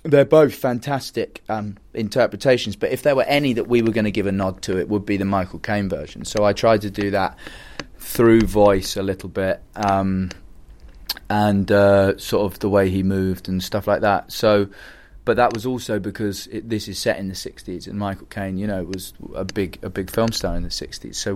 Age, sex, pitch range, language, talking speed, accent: 30-49, male, 95-110 Hz, German, 220 wpm, British